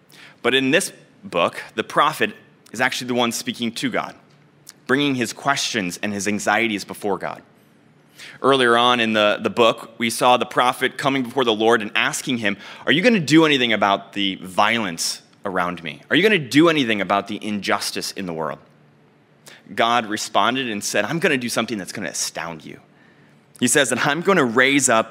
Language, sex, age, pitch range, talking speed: English, male, 20-39, 100-130 Hz, 200 wpm